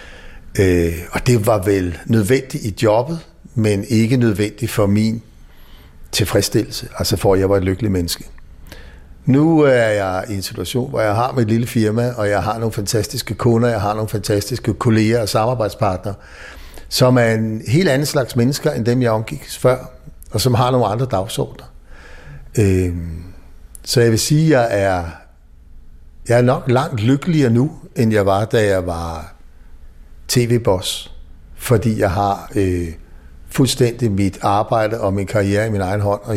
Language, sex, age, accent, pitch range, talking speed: Danish, male, 60-79, native, 95-120 Hz, 160 wpm